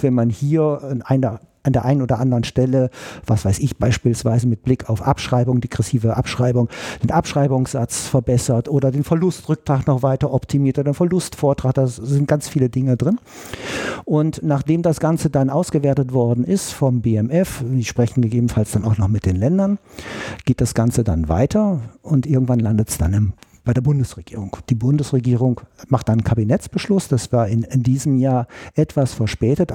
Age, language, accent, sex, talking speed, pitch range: 50-69, German, German, male, 170 wpm, 115-145 Hz